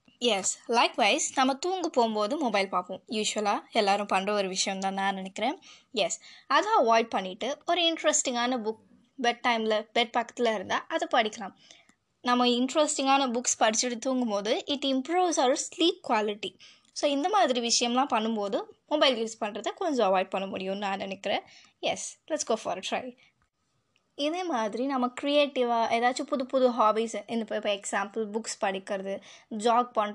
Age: 20-39